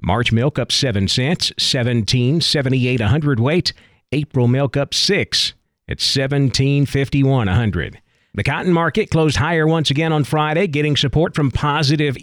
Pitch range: 120-155 Hz